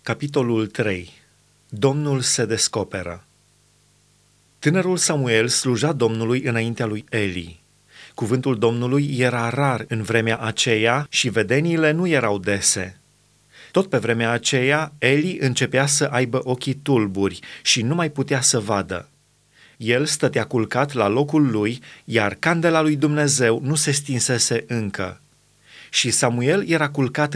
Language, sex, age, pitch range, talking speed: Romanian, male, 30-49, 115-145 Hz, 125 wpm